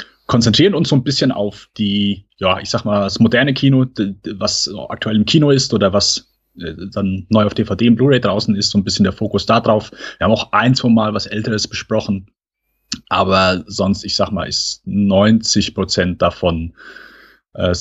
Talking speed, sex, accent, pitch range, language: 185 wpm, male, German, 95-110 Hz, German